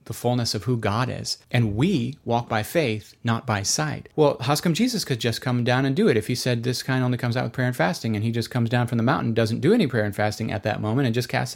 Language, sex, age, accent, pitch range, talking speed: English, male, 30-49, American, 115-145 Hz, 295 wpm